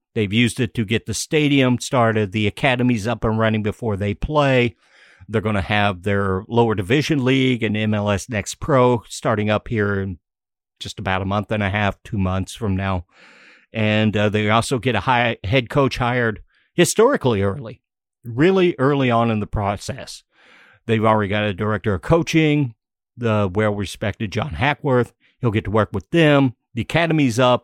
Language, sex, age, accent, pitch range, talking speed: English, male, 50-69, American, 105-125 Hz, 175 wpm